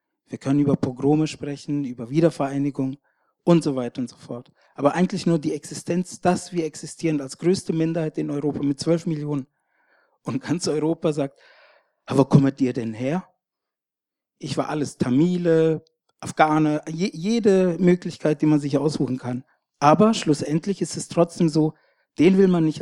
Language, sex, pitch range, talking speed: German, male, 140-170 Hz, 160 wpm